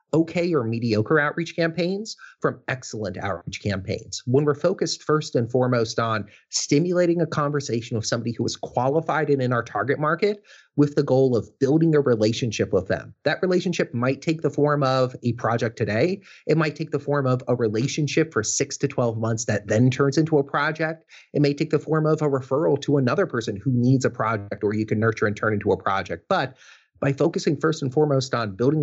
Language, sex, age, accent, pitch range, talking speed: English, male, 30-49, American, 110-150 Hz, 205 wpm